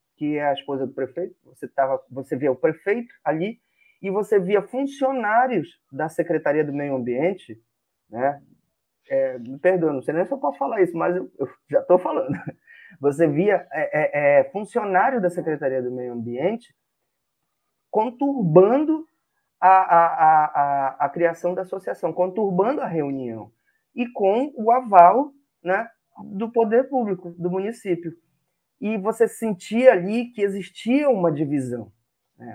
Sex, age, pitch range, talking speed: male, 20-39, 155-215 Hz, 135 wpm